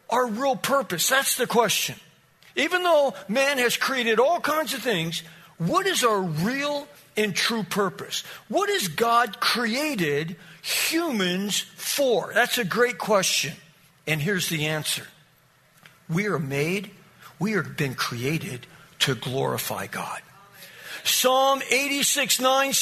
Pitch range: 190-265 Hz